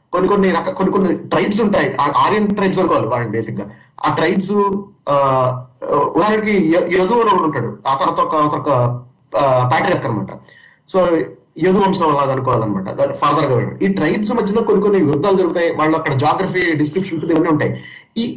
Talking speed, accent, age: 145 wpm, native, 30-49